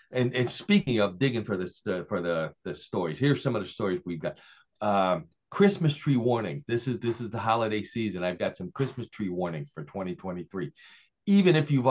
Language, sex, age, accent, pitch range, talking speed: English, male, 50-69, American, 95-130 Hz, 200 wpm